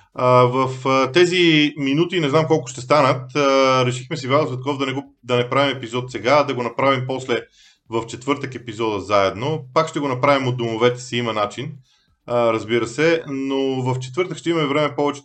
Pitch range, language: 120-145 Hz, Bulgarian